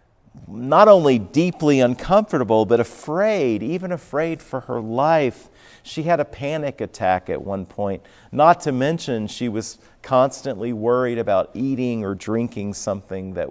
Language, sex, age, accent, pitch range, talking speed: English, male, 40-59, American, 105-160 Hz, 140 wpm